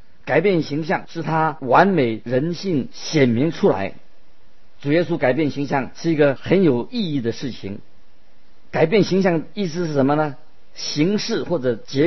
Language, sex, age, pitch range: Chinese, male, 50-69, 125-165 Hz